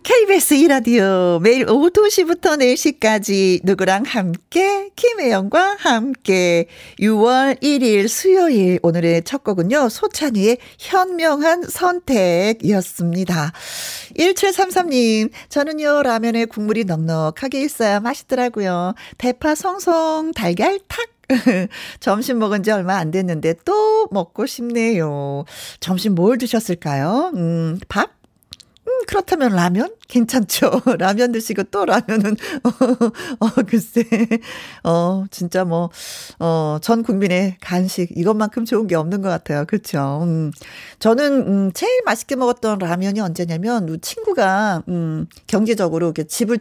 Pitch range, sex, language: 180-265 Hz, female, Korean